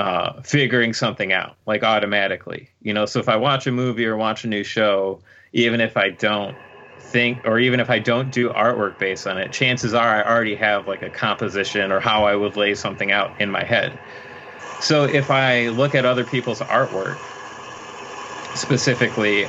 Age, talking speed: 30-49, 190 wpm